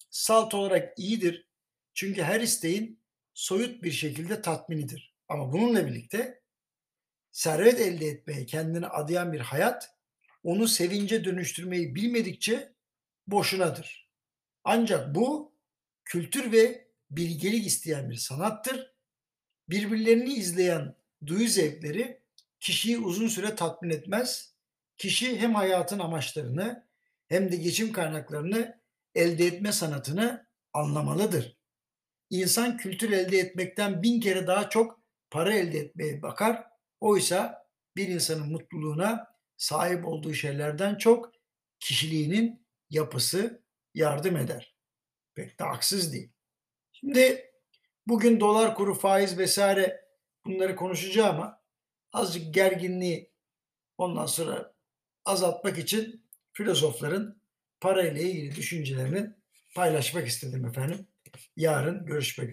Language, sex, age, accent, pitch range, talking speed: Turkish, male, 60-79, native, 160-225 Hz, 100 wpm